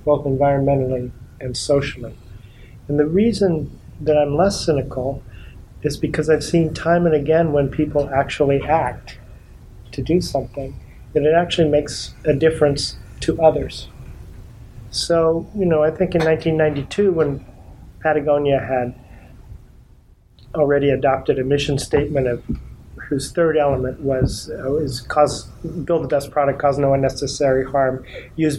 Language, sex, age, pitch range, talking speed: English, male, 40-59, 130-155 Hz, 135 wpm